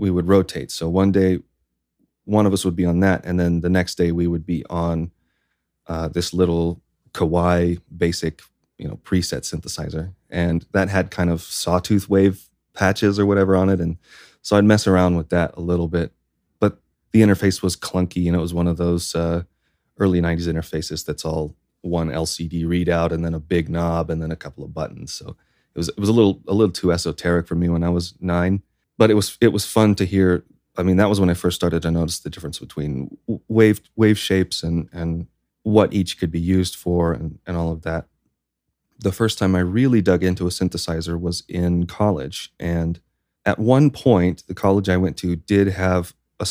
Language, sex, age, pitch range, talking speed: English, male, 30-49, 85-95 Hz, 210 wpm